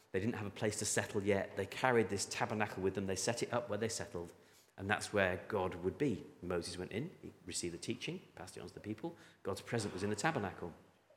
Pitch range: 95-125 Hz